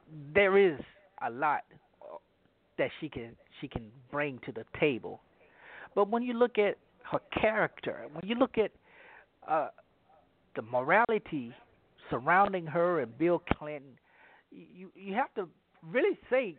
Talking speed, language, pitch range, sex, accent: 140 wpm, English, 145-205 Hz, male, American